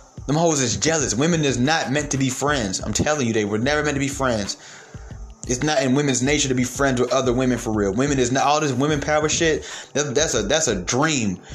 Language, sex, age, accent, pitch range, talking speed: English, male, 20-39, American, 120-150 Hz, 250 wpm